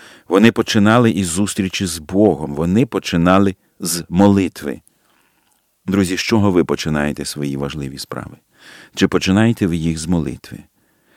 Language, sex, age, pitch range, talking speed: Ukrainian, male, 50-69, 85-110 Hz, 130 wpm